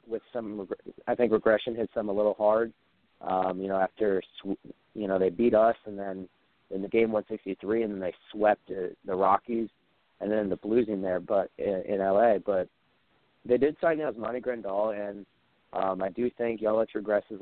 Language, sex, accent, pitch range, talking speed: English, male, American, 95-115 Hz, 195 wpm